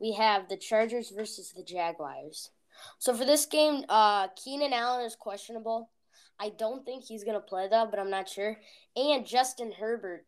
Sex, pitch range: female, 190-245 Hz